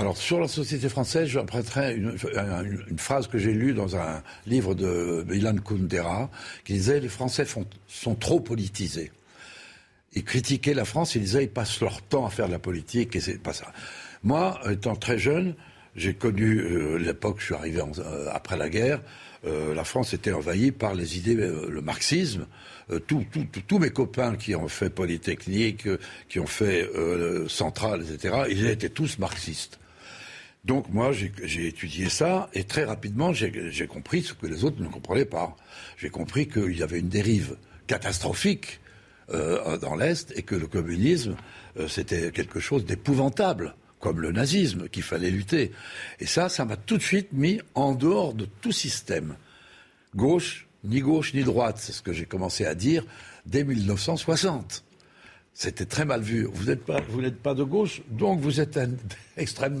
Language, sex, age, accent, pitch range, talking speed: French, male, 70-89, French, 95-140 Hz, 180 wpm